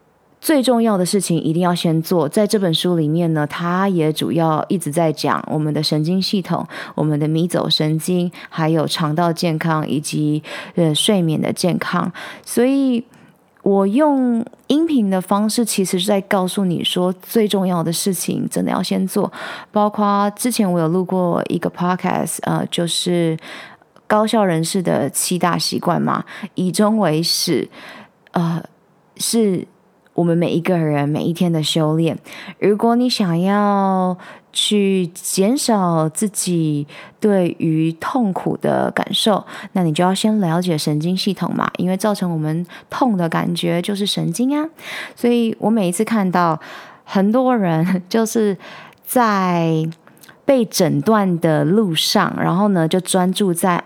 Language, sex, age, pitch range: Chinese, female, 20-39, 165-210 Hz